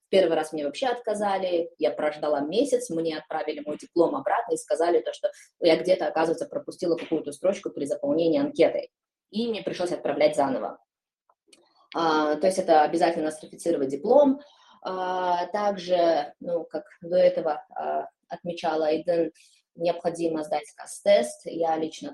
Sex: female